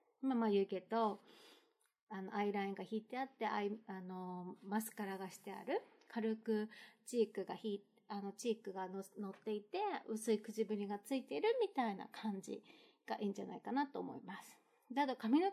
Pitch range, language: 200-260 Hz, Japanese